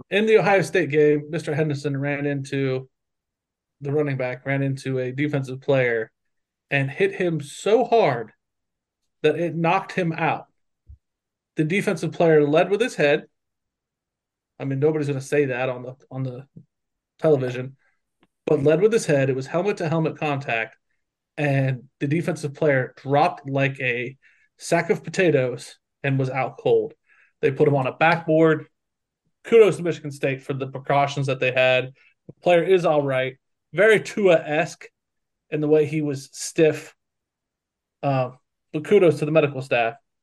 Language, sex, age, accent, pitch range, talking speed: English, male, 30-49, American, 140-175 Hz, 160 wpm